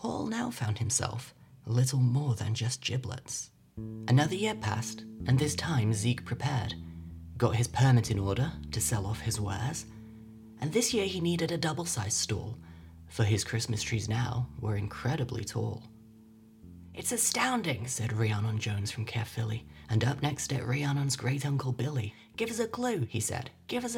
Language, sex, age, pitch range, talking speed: English, male, 30-49, 110-140 Hz, 165 wpm